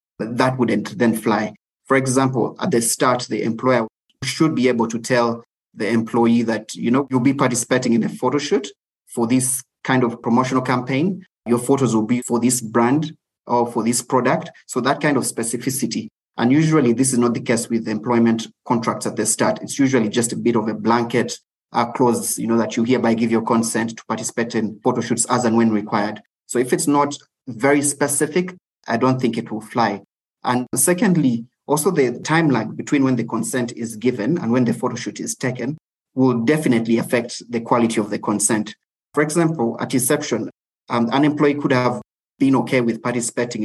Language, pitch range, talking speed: English, 115-130 Hz, 195 wpm